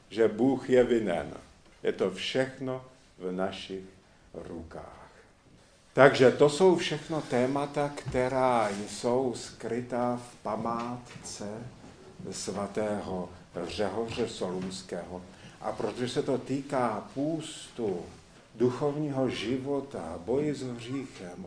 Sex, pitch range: male, 110-135 Hz